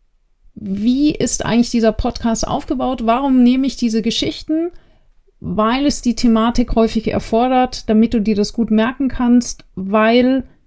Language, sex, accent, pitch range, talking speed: German, female, German, 210-250 Hz, 140 wpm